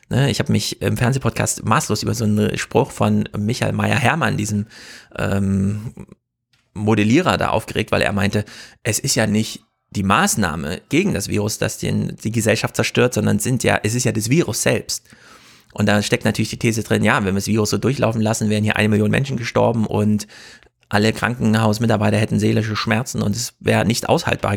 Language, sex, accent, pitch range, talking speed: German, male, German, 105-125 Hz, 190 wpm